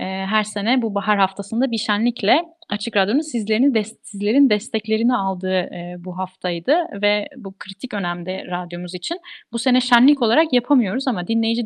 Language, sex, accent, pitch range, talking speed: Turkish, female, native, 195-255 Hz, 140 wpm